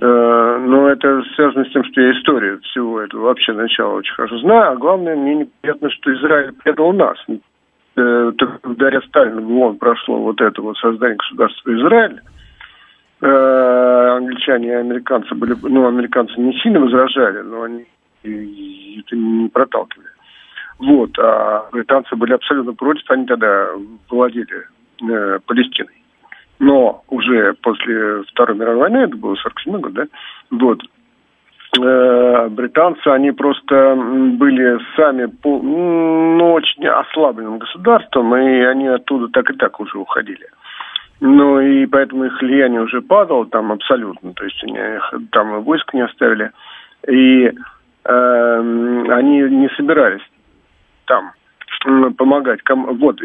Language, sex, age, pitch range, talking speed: Russian, male, 50-69, 120-140 Hz, 135 wpm